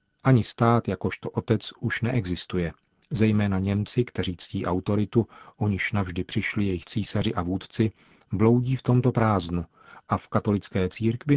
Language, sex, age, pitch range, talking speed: Czech, male, 40-59, 95-120 Hz, 140 wpm